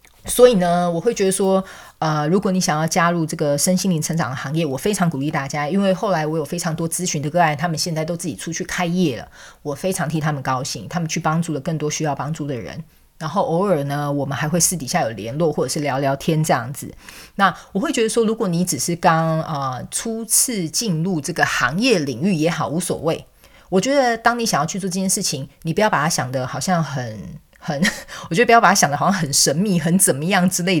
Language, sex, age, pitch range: Chinese, female, 30-49, 155-205 Hz